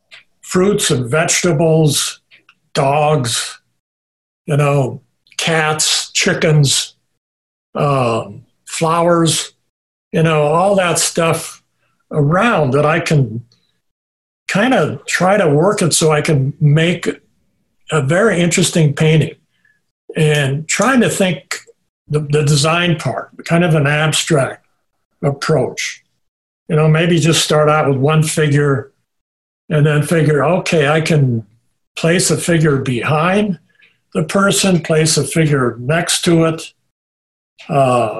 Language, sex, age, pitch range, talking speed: English, male, 60-79, 140-170 Hz, 115 wpm